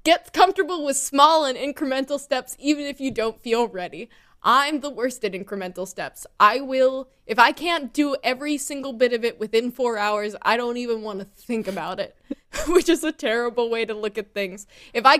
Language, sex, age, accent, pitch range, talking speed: English, female, 10-29, American, 200-260 Hz, 205 wpm